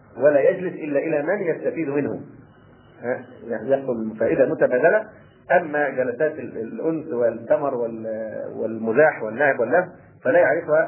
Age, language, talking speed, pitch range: 40-59, Arabic, 105 wpm, 130-165 Hz